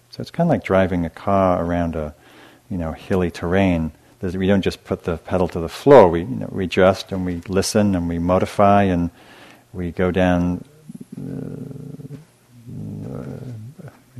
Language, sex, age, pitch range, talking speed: English, male, 40-59, 95-120 Hz, 165 wpm